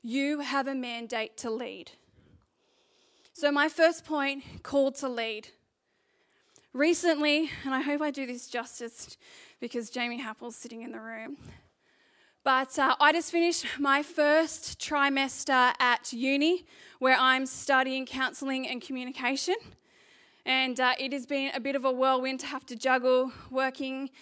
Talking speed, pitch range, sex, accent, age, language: 145 wpm, 255-300 Hz, female, Australian, 10-29, English